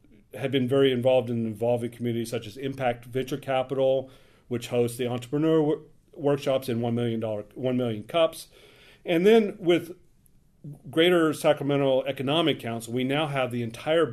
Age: 40-59